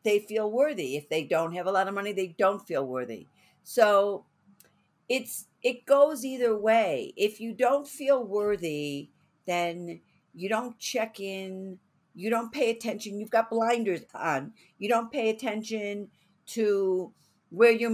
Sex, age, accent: female, 60-79, American